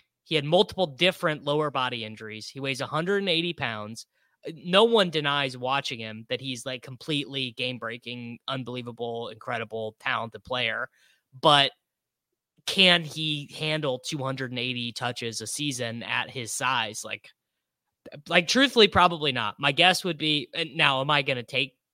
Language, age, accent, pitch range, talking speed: English, 20-39, American, 125-155 Hz, 140 wpm